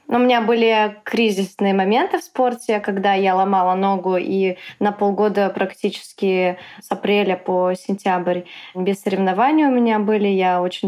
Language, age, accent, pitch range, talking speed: Russian, 20-39, native, 200-235 Hz, 145 wpm